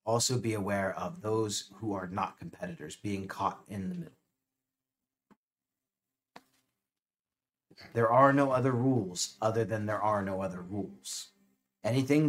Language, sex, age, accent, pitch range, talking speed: English, male, 40-59, American, 90-130 Hz, 130 wpm